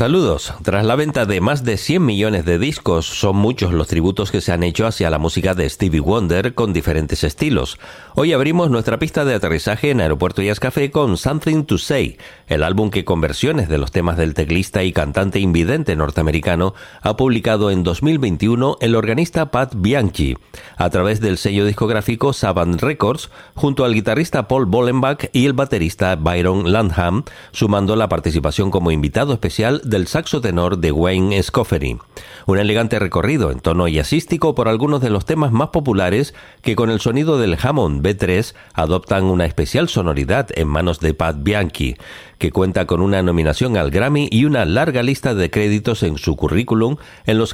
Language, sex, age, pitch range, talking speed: Spanish, male, 40-59, 85-120 Hz, 180 wpm